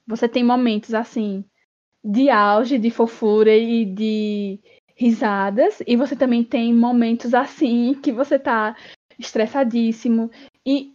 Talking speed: 120 wpm